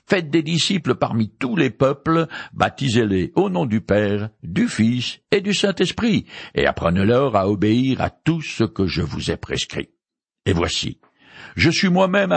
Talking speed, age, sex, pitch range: 170 wpm, 60-79, male, 110-180 Hz